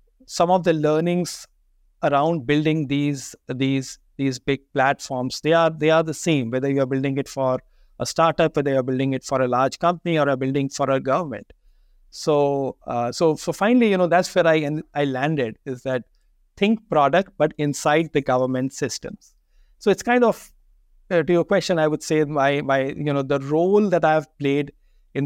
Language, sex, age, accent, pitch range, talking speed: English, male, 50-69, Indian, 135-155 Hz, 195 wpm